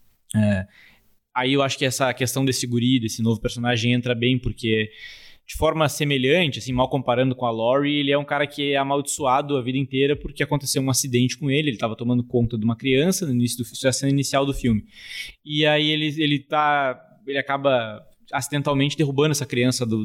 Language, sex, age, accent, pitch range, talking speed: Portuguese, male, 20-39, Brazilian, 120-145 Hz, 205 wpm